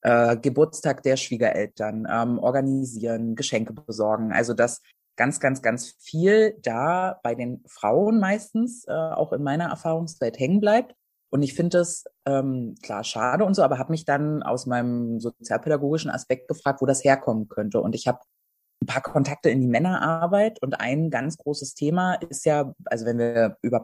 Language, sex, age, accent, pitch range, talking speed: German, female, 30-49, German, 120-160 Hz, 170 wpm